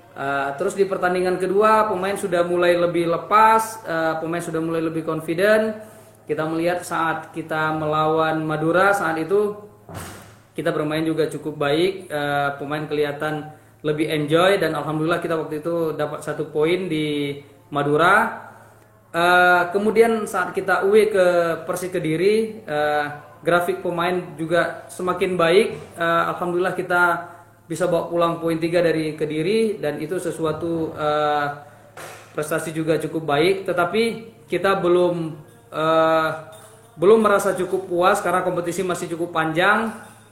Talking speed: 130 wpm